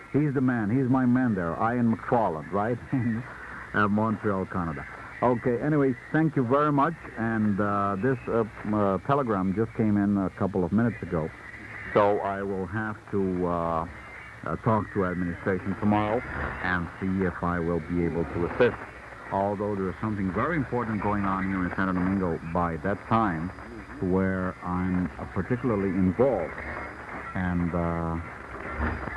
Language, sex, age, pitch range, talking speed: Italian, male, 60-79, 85-110 Hz, 155 wpm